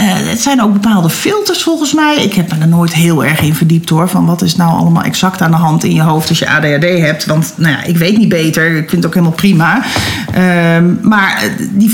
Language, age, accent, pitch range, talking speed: Dutch, 40-59, Dutch, 165-205 Hz, 250 wpm